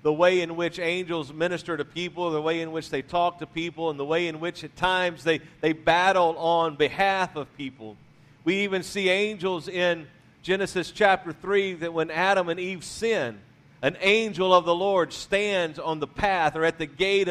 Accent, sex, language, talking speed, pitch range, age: American, male, English, 200 wpm, 155-190 Hz, 50-69